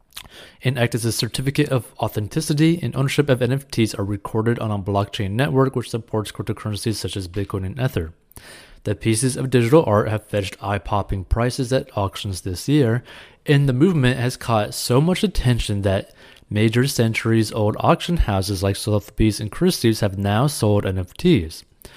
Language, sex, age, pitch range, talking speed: English, male, 30-49, 100-130 Hz, 160 wpm